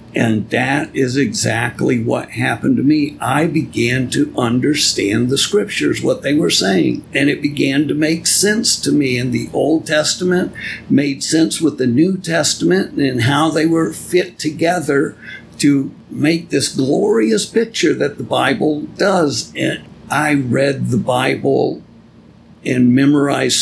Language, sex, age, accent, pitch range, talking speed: English, male, 60-79, American, 125-155 Hz, 145 wpm